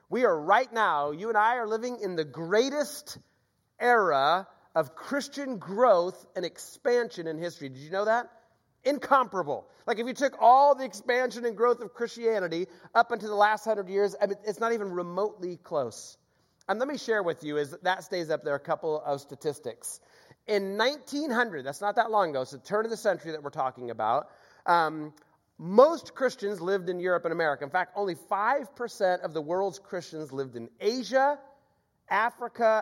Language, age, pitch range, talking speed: English, 30-49, 165-235 Hz, 180 wpm